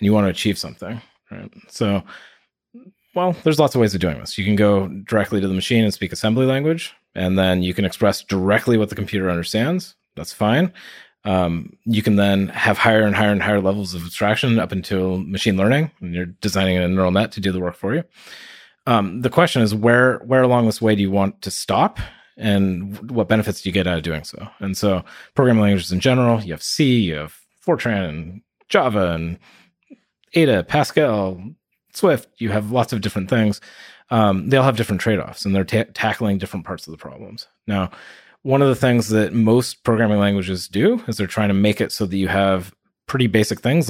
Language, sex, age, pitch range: English, male, 30-49, 95-115 Hz